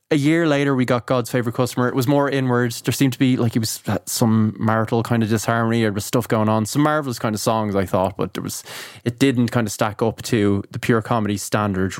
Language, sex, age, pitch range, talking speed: English, male, 20-39, 110-135 Hz, 250 wpm